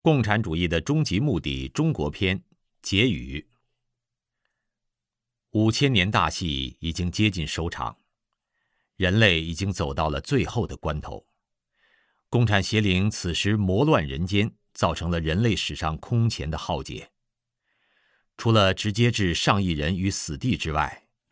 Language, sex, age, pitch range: Chinese, male, 50-69, 80-110 Hz